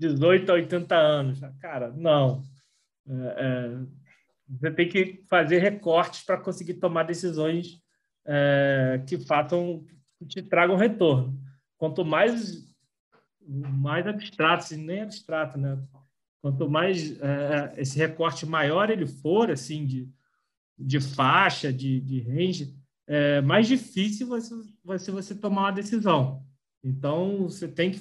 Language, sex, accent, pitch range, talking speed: Portuguese, male, Brazilian, 140-180 Hz, 110 wpm